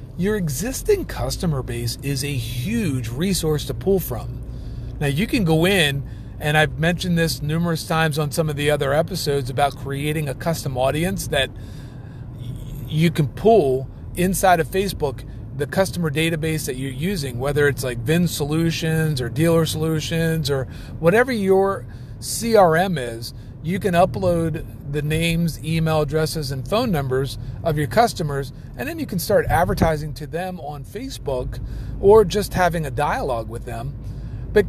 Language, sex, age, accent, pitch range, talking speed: English, male, 40-59, American, 130-170 Hz, 155 wpm